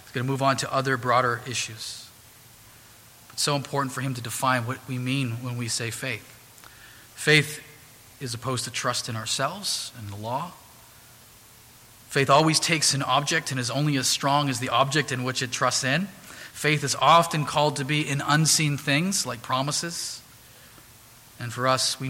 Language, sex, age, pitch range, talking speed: English, male, 40-59, 120-150 Hz, 175 wpm